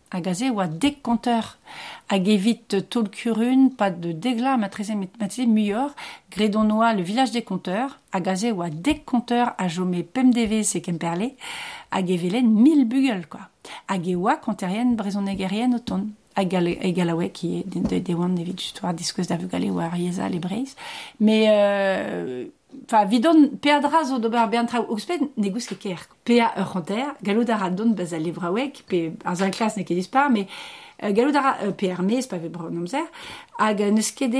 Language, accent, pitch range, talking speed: French, French, 185-240 Hz, 125 wpm